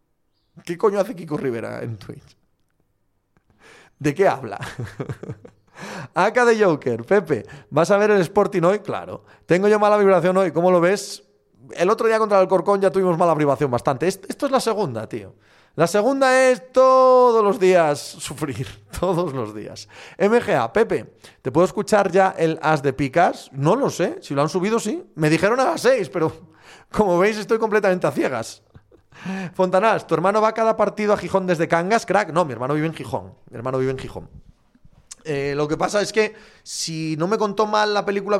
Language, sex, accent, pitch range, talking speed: Spanish, male, Spanish, 155-210 Hz, 190 wpm